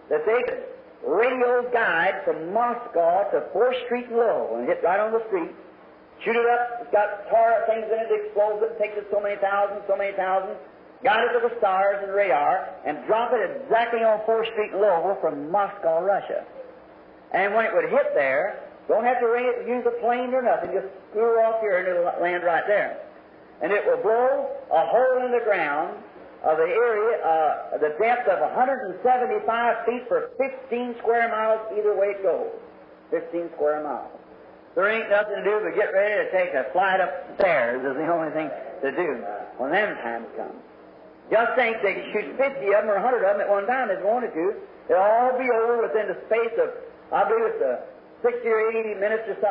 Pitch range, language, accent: 200-255 Hz, English, American